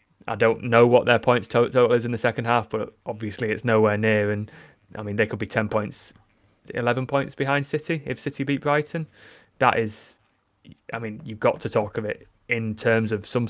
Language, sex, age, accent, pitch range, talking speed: English, male, 20-39, British, 105-115 Hz, 210 wpm